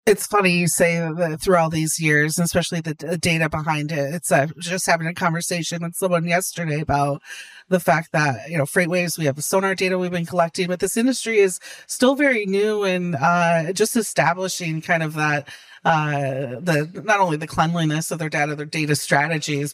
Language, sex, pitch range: English, female, 155-185 Hz